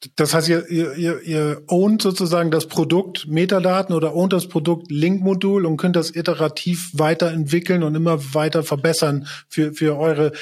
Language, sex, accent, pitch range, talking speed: German, male, German, 155-180 Hz, 155 wpm